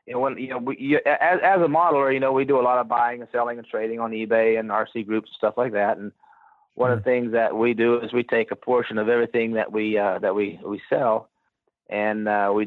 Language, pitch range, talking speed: English, 110-125 Hz, 260 wpm